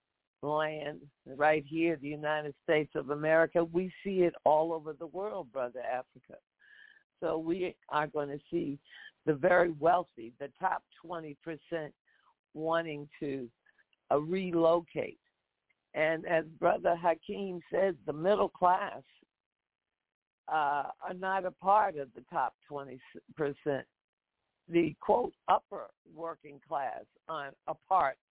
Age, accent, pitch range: 60-79, American, 150-190 Hz